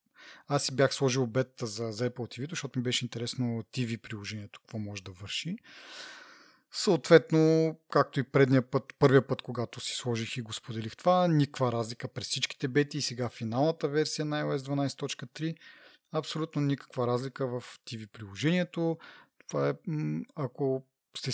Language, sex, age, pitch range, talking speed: Bulgarian, male, 30-49, 115-155 Hz, 155 wpm